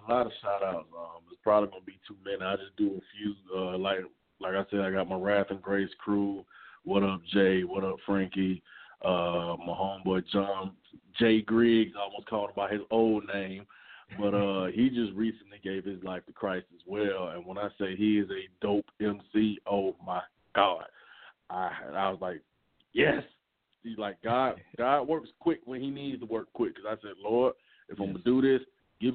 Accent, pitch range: American, 95-115 Hz